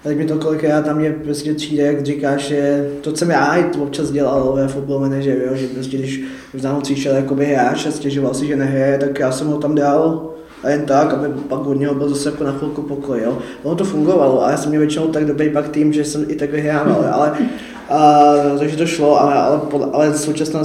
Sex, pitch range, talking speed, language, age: male, 140-155 Hz, 235 wpm, Czech, 20-39